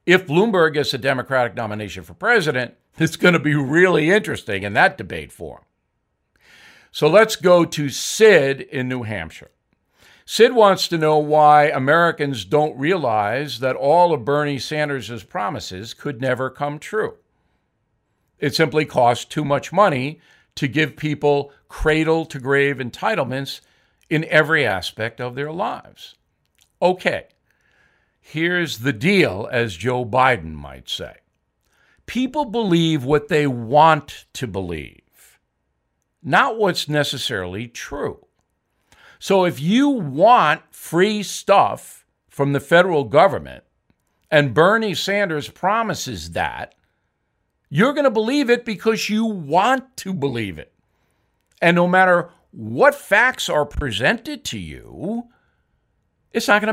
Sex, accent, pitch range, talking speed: male, American, 130-185 Hz, 125 wpm